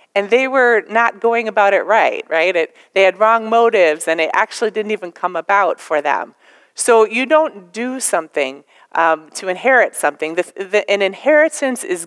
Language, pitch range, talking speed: English, 175-235 Hz, 170 wpm